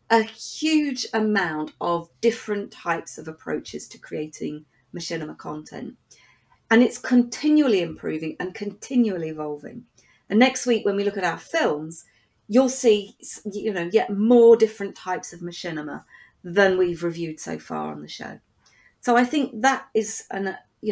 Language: English